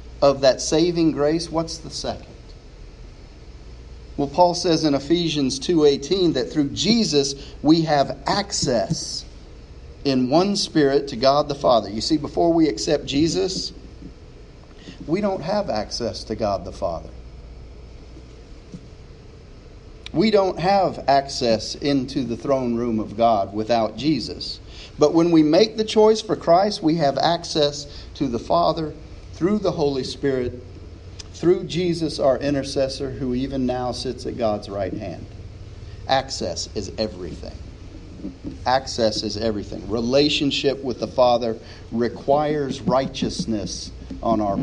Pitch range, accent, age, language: 110-150 Hz, American, 40-59, English